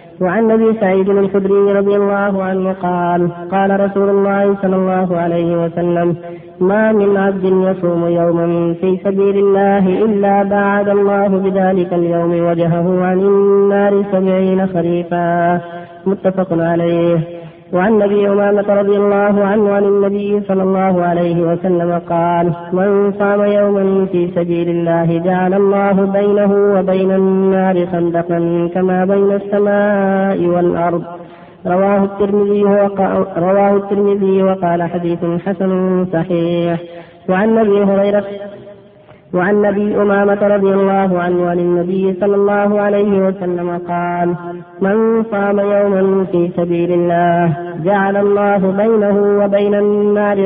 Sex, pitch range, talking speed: female, 175-200 Hz, 120 wpm